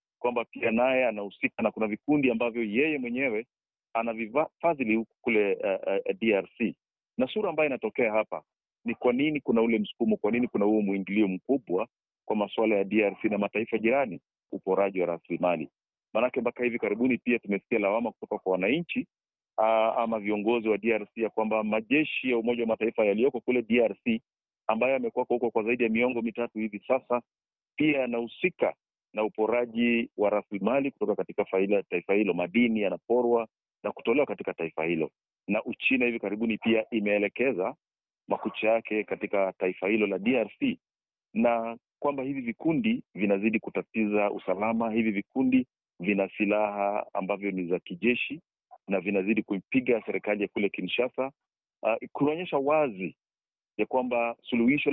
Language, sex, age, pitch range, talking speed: Swahili, male, 40-59, 105-125 Hz, 150 wpm